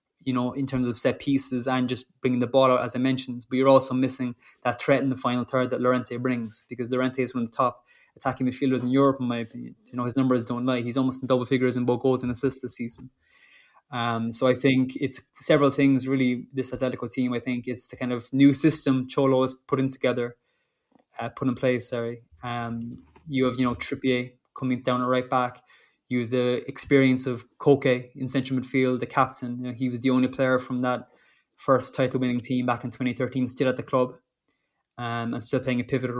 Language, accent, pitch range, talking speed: English, Irish, 125-135 Hz, 220 wpm